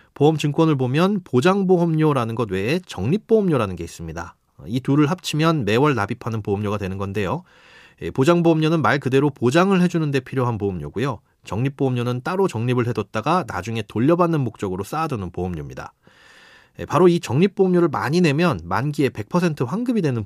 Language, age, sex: Korean, 30-49, male